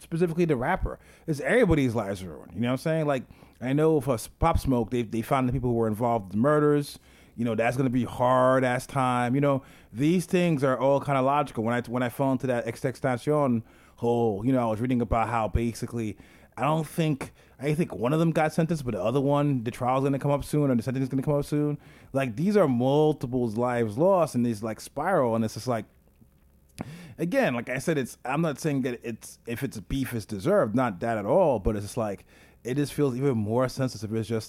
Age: 30-49